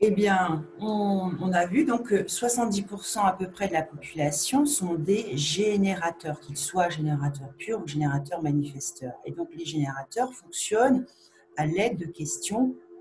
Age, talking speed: 40-59, 150 wpm